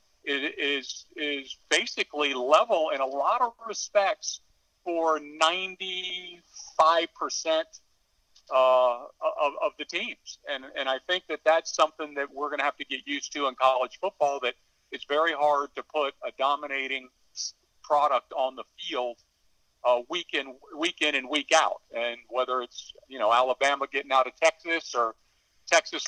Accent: American